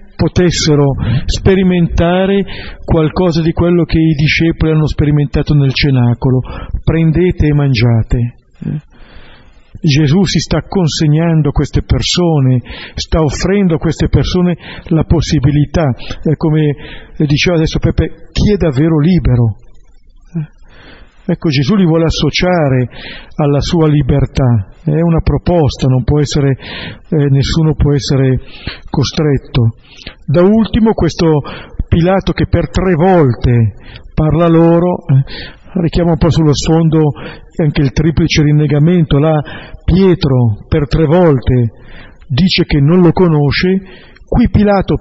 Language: Italian